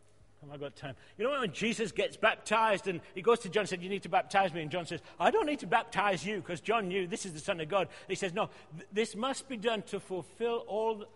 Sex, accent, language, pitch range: male, British, English, 170-225 Hz